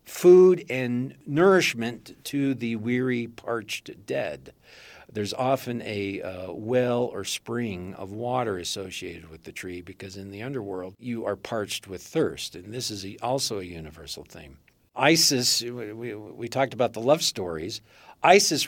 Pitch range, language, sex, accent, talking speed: 100-135 Hz, English, male, American, 150 wpm